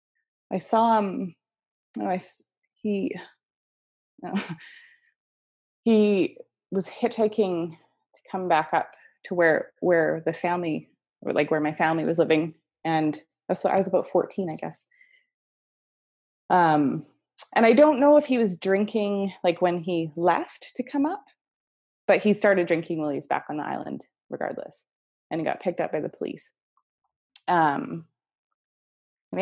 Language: English